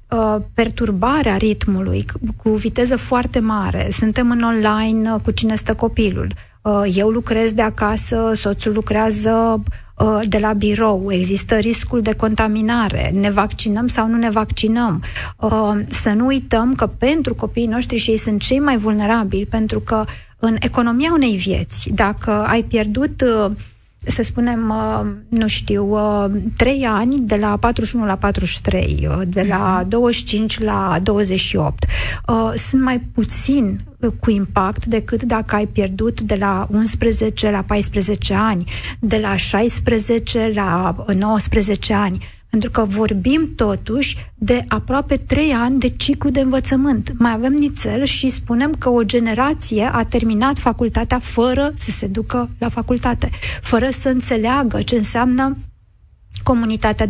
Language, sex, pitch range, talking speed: Romanian, female, 205-240 Hz, 130 wpm